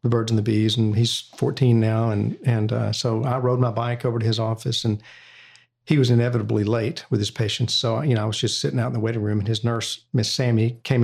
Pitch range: 110-125 Hz